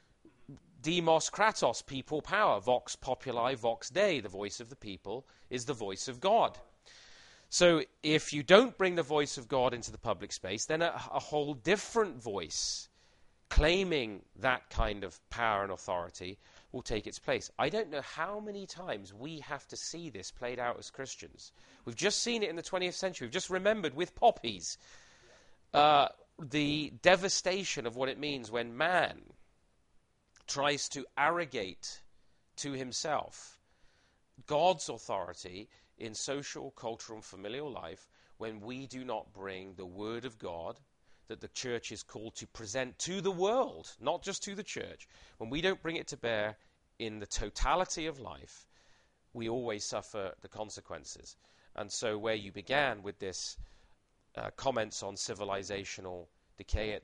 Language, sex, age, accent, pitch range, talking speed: English, male, 30-49, British, 105-155 Hz, 160 wpm